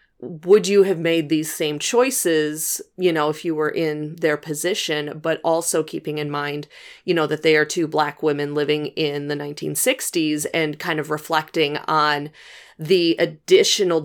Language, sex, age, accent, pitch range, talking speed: English, female, 30-49, American, 150-175 Hz, 165 wpm